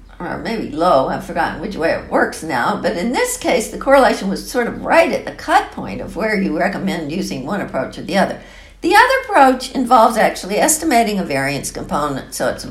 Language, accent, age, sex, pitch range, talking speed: English, American, 60-79, female, 195-275 Hz, 215 wpm